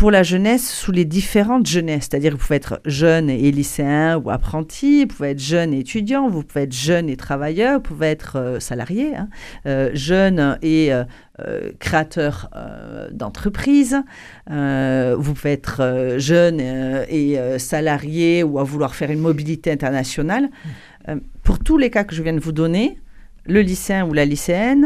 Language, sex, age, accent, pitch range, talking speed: French, female, 40-59, French, 130-175 Hz, 180 wpm